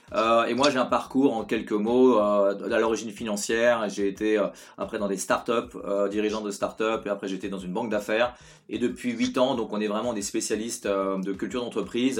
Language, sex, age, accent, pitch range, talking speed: French, male, 30-49, French, 105-130 Hz, 225 wpm